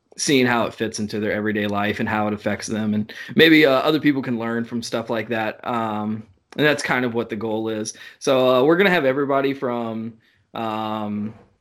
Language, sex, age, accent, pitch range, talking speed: English, male, 20-39, American, 110-135 Hz, 215 wpm